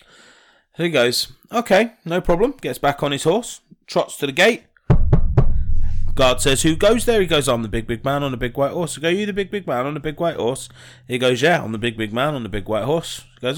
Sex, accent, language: male, British, English